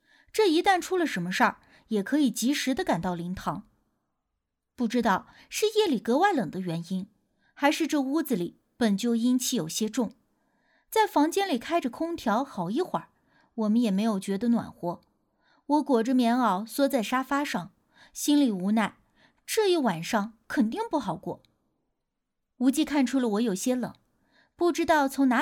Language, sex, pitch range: Chinese, female, 215-295 Hz